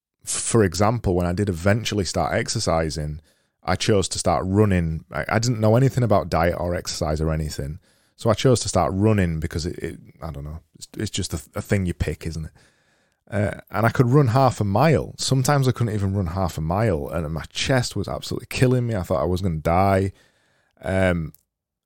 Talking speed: 210 wpm